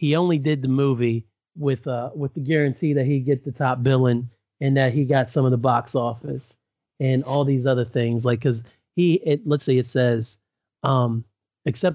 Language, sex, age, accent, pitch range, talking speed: English, male, 30-49, American, 120-140 Hz, 195 wpm